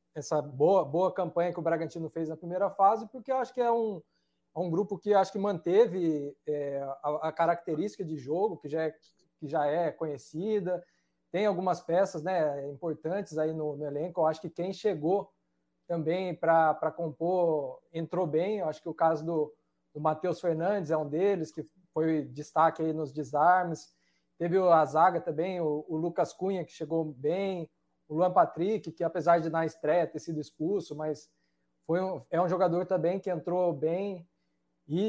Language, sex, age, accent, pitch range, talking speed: Portuguese, male, 20-39, Brazilian, 150-180 Hz, 180 wpm